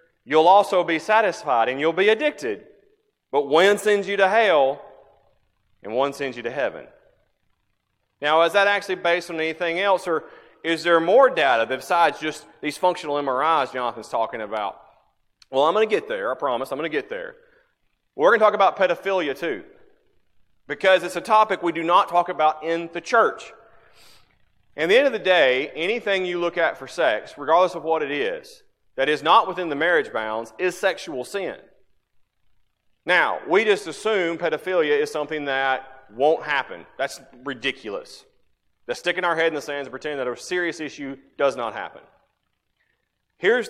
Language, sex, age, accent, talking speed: English, male, 30-49, American, 175 wpm